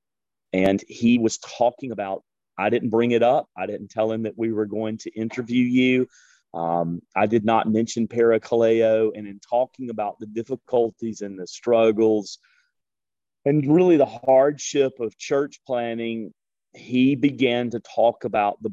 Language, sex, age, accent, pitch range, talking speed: English, male, 40-59, American, 100-120 Hz, 155 wpm